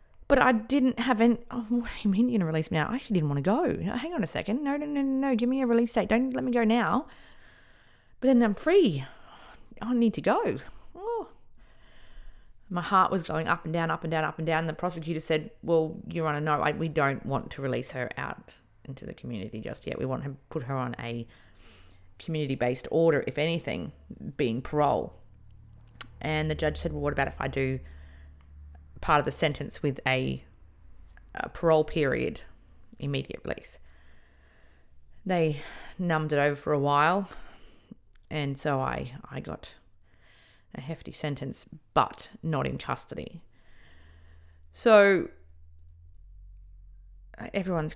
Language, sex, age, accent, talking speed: English, female, 30-49, Australian, 175 wpm